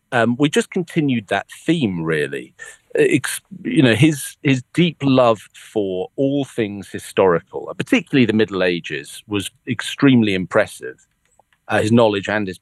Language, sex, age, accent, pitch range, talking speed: English, male, 40-59, British, 100-140 Hz, 140 wpm